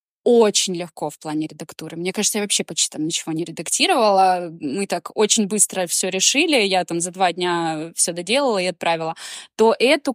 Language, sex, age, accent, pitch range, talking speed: Russian, female, 20-39, native, 185-245 Hz, 185 wpm